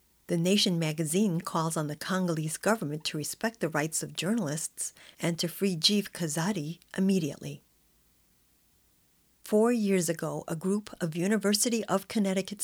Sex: female